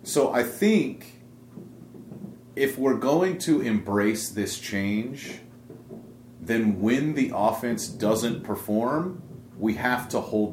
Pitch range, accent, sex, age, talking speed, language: 105-125 Hz, American, male, 30-49, 115 wpm, English